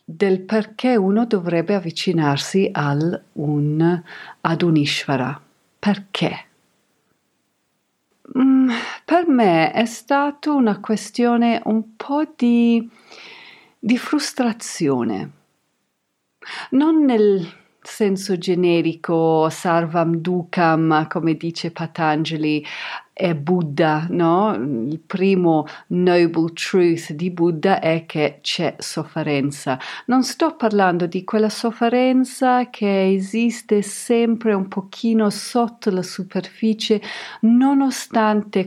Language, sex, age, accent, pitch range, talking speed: Italian, female, 40-59, native, 160-235 Hz, 90 wpm